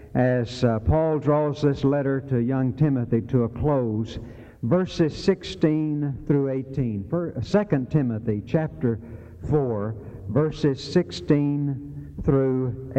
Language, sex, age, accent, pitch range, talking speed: English, male, 60-79, American, 115-150 Hz, 105 wpm